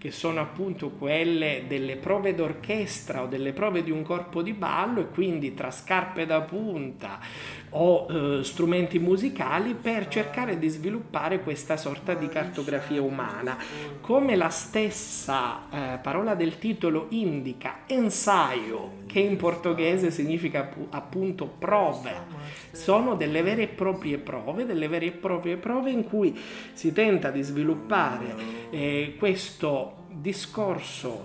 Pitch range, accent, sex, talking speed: 135-190 Hz, native, male, 135 wpm